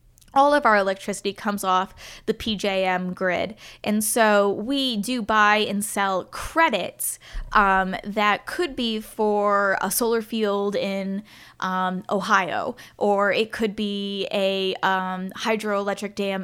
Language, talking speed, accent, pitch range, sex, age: English, 130 wpm, American, 195-235 Hz, female, 10-29